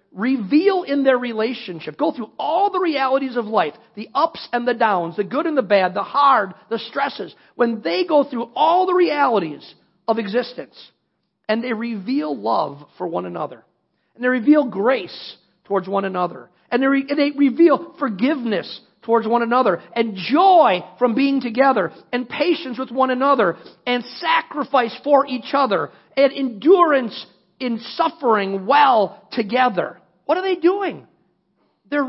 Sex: male